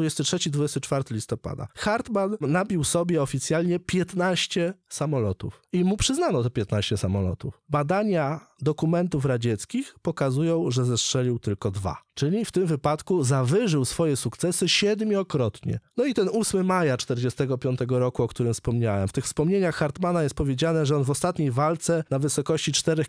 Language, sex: Polish, male